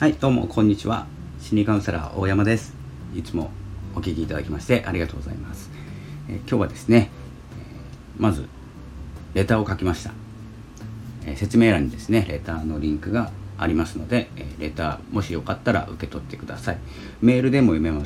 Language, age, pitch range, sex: Japanese, 40-59, 75-110 Hz, male